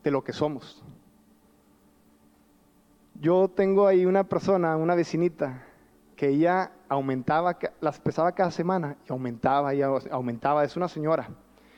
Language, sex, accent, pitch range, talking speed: Spanish, male, Mexican, 145-215 Hz, 120 wpm